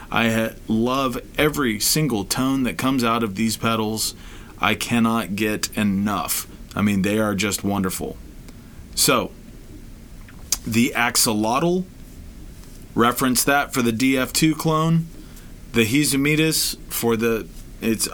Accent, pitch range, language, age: American, 115-155 Hz, English, 30-49